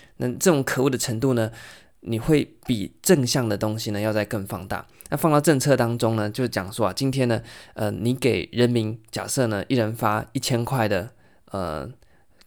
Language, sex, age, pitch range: Chinese, male, 20-39, 110-135 Hz